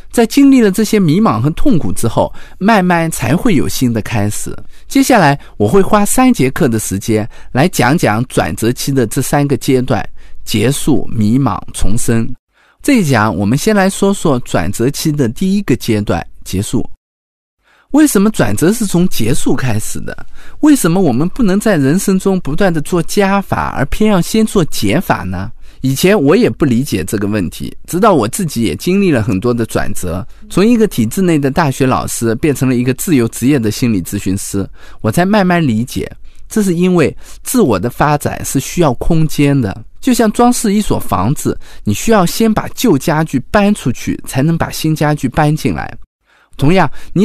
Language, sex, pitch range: Chinese, male, 115-190 Hz